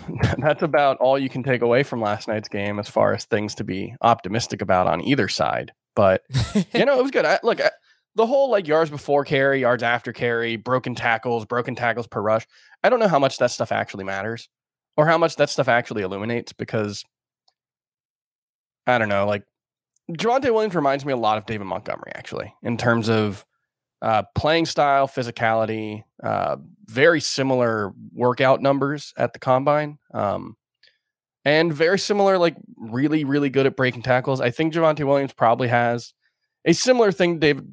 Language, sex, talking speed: English, male, 180 wpm